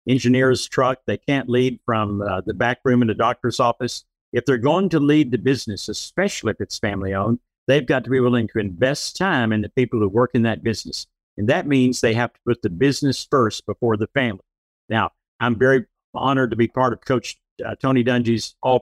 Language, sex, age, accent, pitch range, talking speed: English, male, 50-69, American, 115-140 Hz, 215 wpm